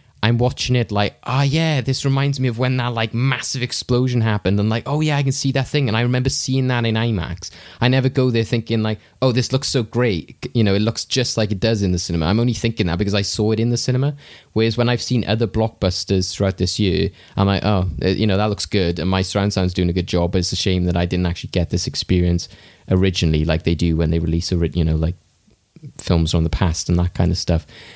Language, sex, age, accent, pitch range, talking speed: English, male, 20-39, British, 90-120 Hz, 255 wpm